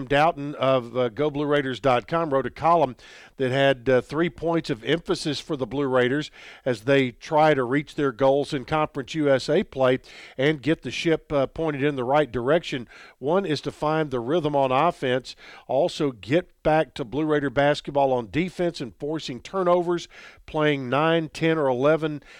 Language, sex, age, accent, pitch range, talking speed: English, male, 50-69, American, 130-155 Hz, 170 wpm